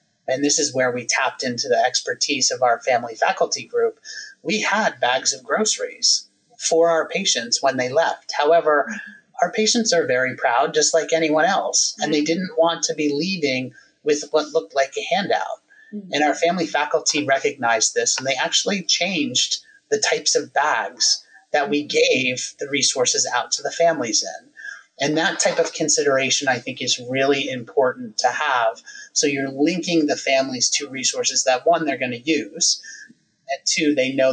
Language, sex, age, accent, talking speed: English, male, 30-49, American, 175 wpm